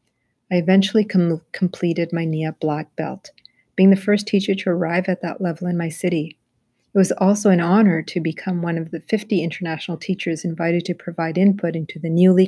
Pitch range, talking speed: 160-190 Hz, 190 wpm